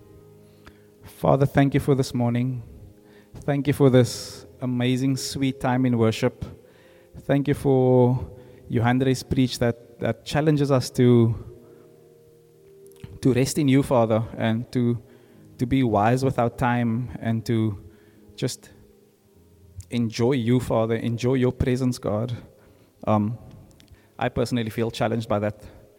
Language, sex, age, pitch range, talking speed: English, male, 20-39, 105-130 Hz, 125 wpm